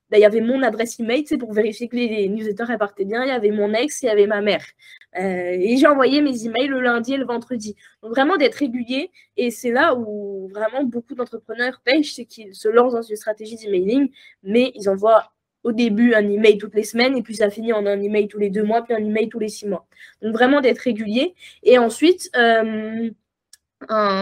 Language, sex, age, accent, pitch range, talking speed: French, female, 20-39, French, 205-245 Hz, 225 wpm